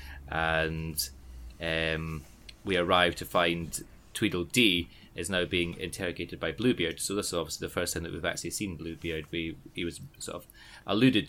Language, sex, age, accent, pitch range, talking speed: English, male, 30-49, British, 85-105 Hz, 165 wpm